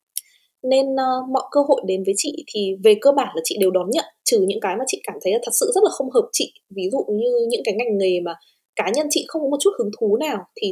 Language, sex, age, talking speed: Vietnamese, female, 20-39, 280 wpm